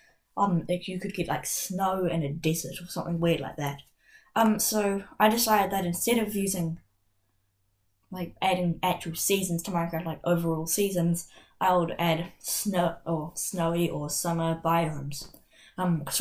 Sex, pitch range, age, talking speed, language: female, 165-195 Hz, 20-39, 160 wpm, English